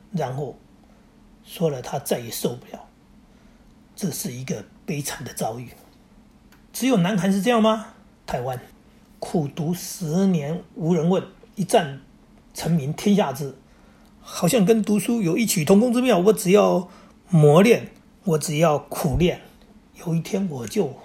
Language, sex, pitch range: Chinese, male, 155-215 Hz